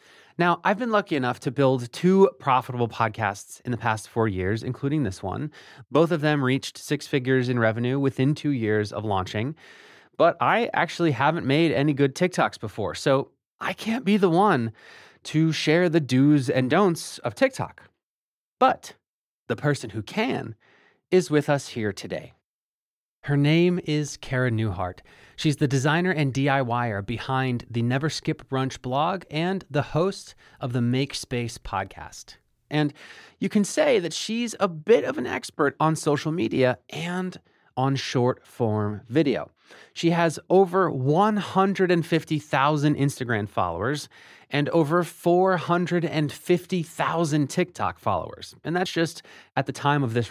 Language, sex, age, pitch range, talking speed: English, male, 30-49, 125-170 Hz, 150 wpm